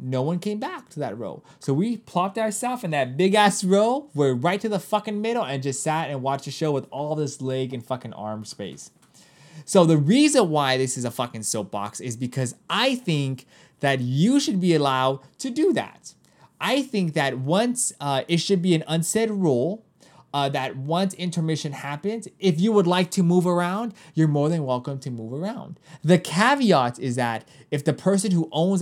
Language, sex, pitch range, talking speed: English, male, 130-185 Hz, 200 wpm